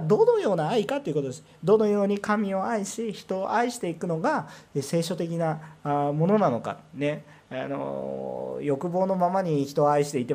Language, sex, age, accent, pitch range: Japanese, male, 40-59, native, 135-195 Hz